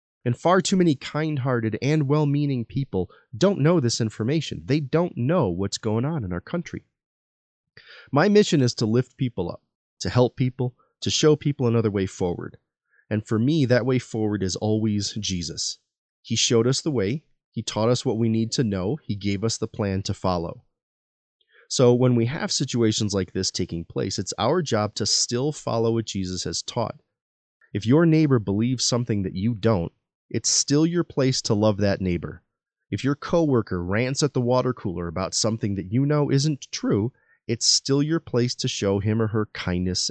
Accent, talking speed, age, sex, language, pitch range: American, 190 wpm, 30-49, male, English, 100-145 Hz